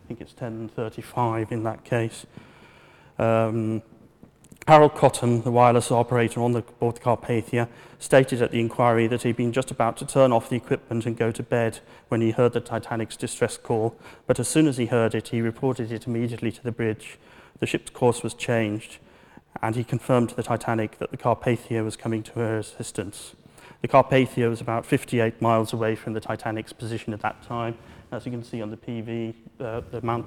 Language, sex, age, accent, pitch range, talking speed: English, male, 30-49, British, 115-125 Hz, 195 wpm